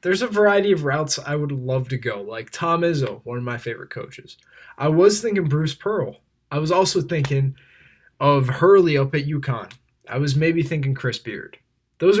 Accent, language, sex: American, English, male